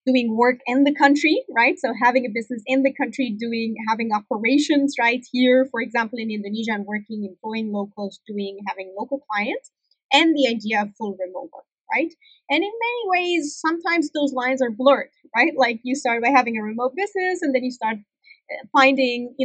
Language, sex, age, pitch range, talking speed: English, female, 30-49, 225-275 Hz, 190 wpm